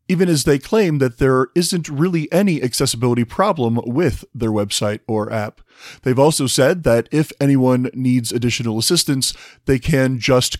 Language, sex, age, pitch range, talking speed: English, male, 30-49, 120-150 Hz, 160 wpm